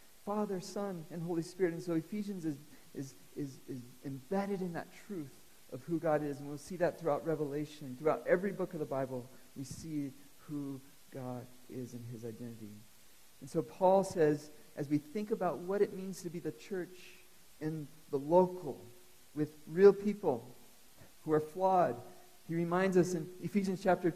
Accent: American